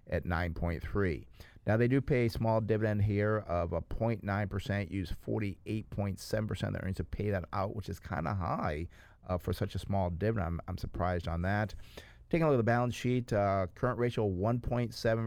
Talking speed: 190 wpm